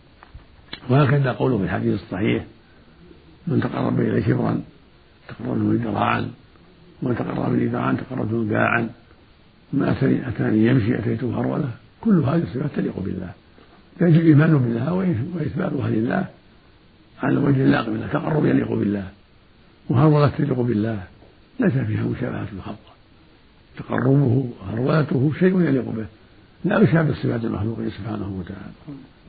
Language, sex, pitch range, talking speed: Arabic, male, 100-135 Hz, 115 wpm